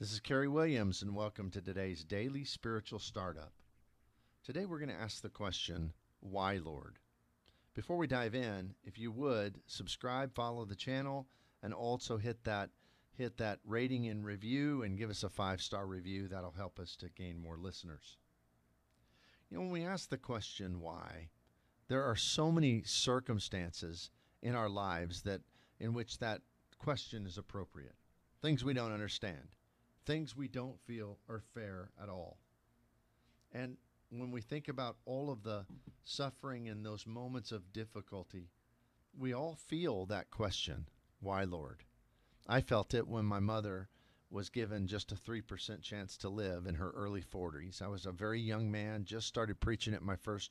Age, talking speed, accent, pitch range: 50-69, 165 wpm, American, 95-120 Hz